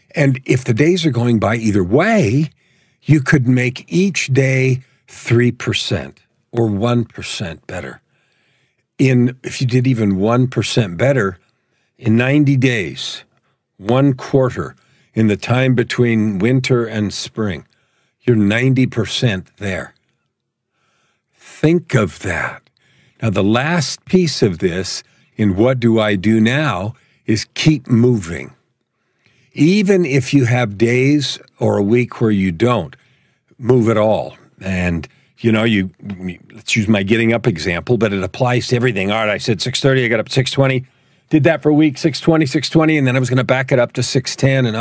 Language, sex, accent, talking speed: English, male, American, 155 wpm